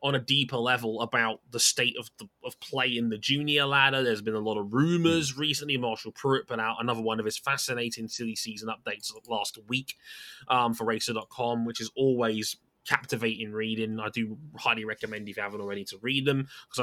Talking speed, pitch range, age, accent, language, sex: 200 wpm, 115-150 Hz, 20-39, British, English, male